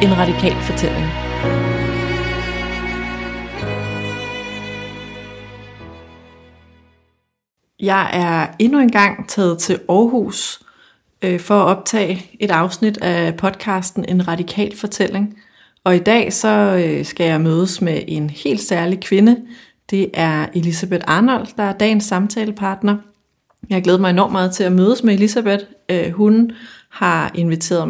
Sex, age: female, 30-49